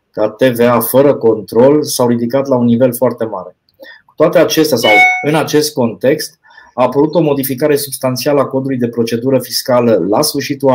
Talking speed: 165 wpm